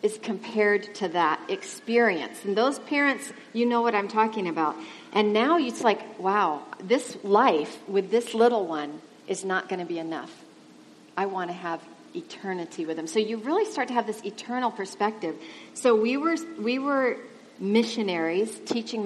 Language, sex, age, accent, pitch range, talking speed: English, female, 40-59, American, 185-250 Hz, 170 wpm